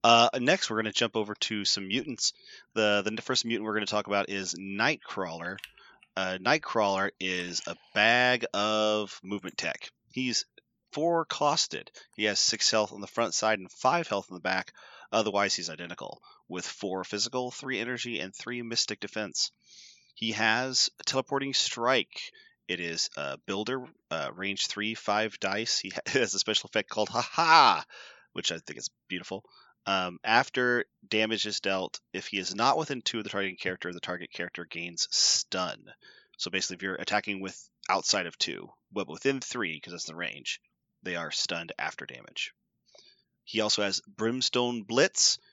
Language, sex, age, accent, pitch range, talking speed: English, male, 30-49, American, 95-120 Hz, 170 wpm